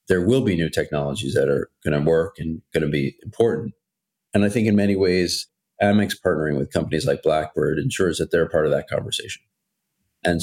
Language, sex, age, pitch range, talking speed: English, male, 30-49, 75-105 Hz, 195 wpm